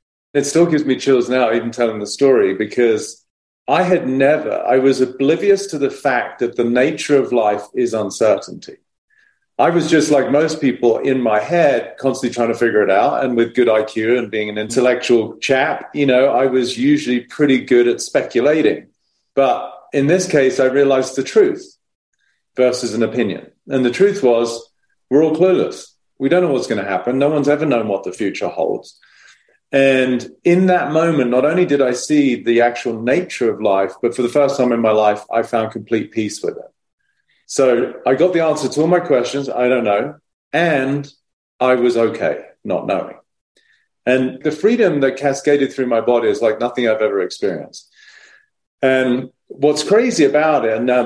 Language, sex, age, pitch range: English, male, 40-59, 120-150 Hz